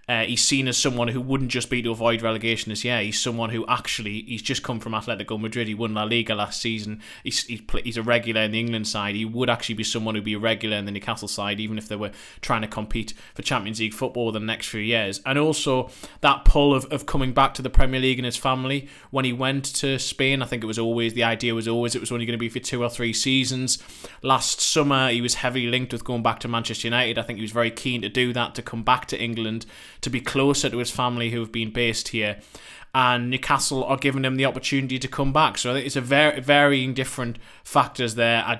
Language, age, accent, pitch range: English, 20-39, British, 115-135 Hz